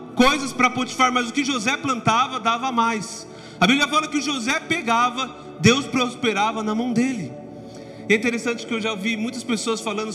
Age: 30-49